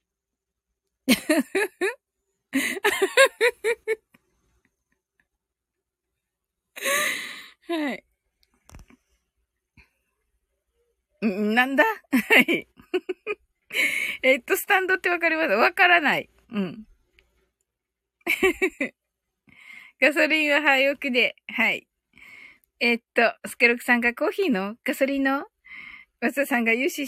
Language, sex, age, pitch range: Japanese, female, 20-39, 235-355 Hz